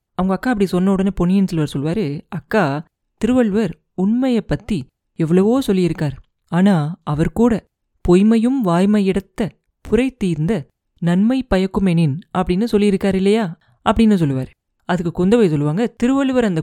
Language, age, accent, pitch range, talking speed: Tamil, 30-49, native, 175-220 Hz, 125 wpm